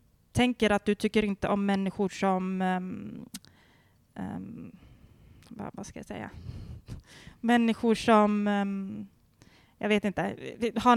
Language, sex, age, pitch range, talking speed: Swedish, female, 20-39, 205-255 Hz, 120 wpm